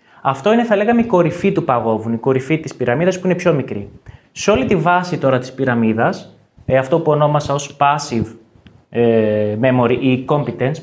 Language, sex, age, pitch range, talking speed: Greek, male, 20-39, 120-175 Hz, 185 wpm